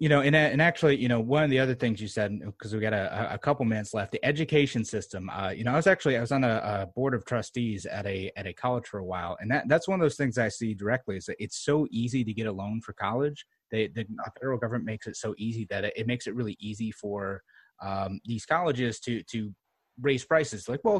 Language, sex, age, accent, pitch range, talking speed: English, male, 30-49, American, 105-135 Hz, 265 wpm